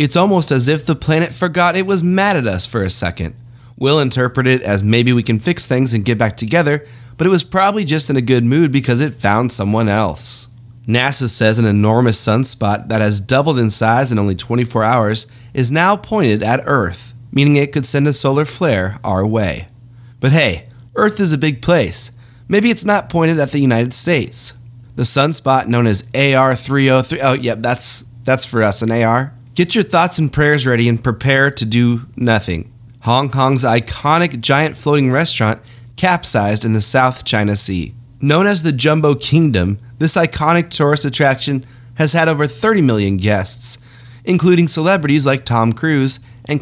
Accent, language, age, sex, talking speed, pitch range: American, English, 20-39, male, 185 wpm, 115-150 Hz